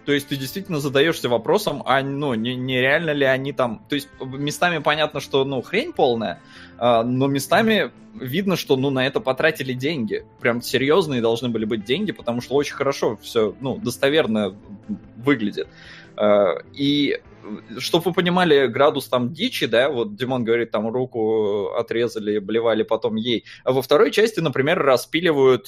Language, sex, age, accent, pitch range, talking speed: Russian, male, 20-39, native, 115-140 Hz, 160 wpm